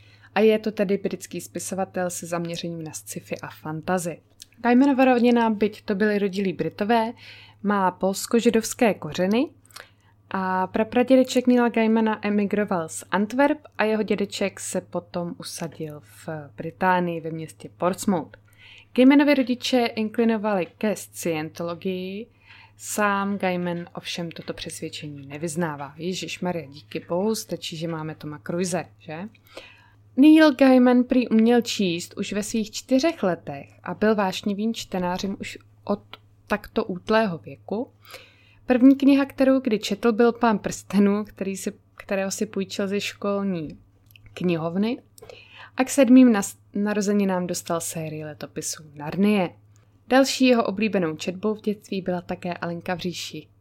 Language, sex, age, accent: Czech, female, 20-39, native